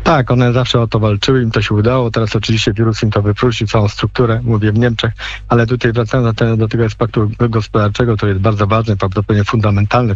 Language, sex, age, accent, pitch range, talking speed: Polish, male, 50-69, native, 115-135 Hz, 205 wpm